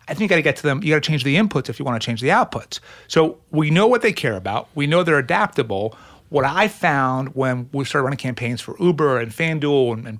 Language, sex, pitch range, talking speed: English, male, 125-165 Hz, 270 wpm